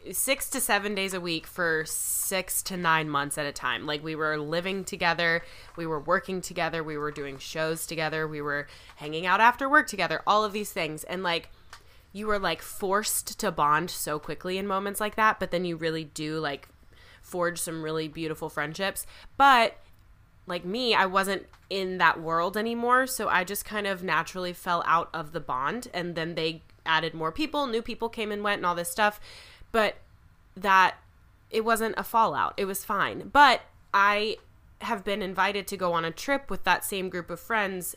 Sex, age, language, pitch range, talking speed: female, 20-39, English, 160-205 Hz, 195 wpm